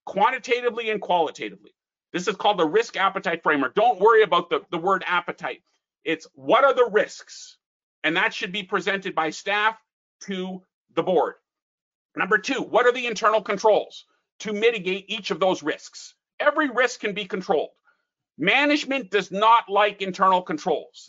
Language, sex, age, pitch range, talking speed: English, male, 50-69, 190-240 Hz, 160 wpm